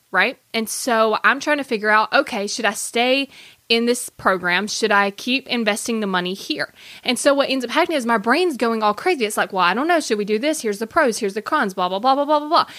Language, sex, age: English, female, 20-39